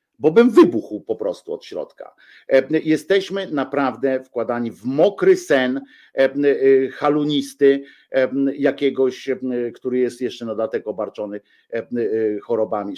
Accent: native